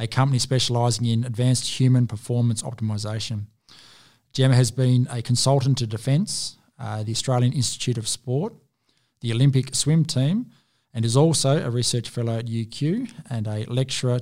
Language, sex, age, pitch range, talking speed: English, male, 20-39, 115-130 Hz, 150 wpm